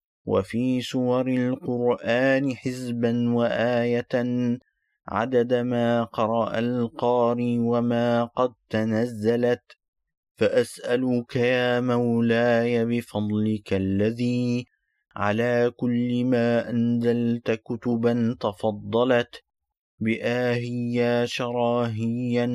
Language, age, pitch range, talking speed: Turkish, 30-49, 115-125 Hz, 65 wpm